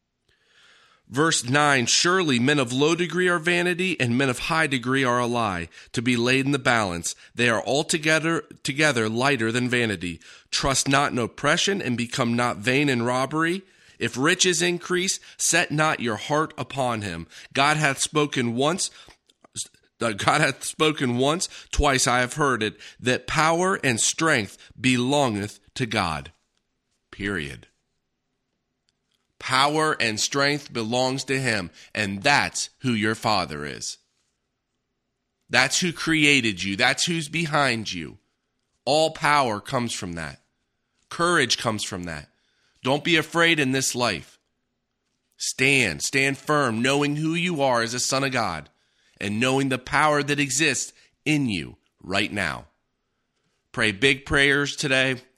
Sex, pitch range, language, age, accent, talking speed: male, 115-150 Hz, English, 40-59, American, 145 wpm